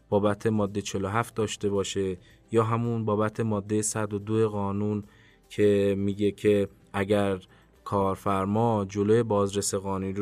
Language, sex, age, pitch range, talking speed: Persian, male, 20-39, 95-110 Hz, 110 wpm